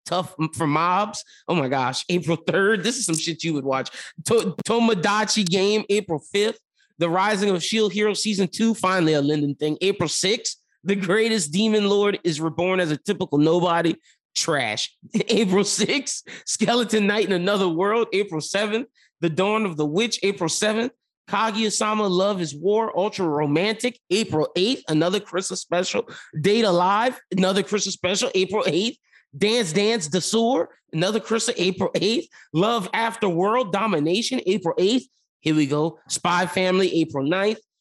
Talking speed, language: 155 wpm, English